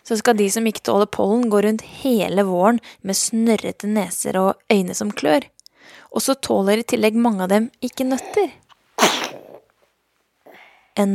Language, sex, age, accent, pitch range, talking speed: English, female, 20-39, Norwegian, 195-230 Hz, 155 wpm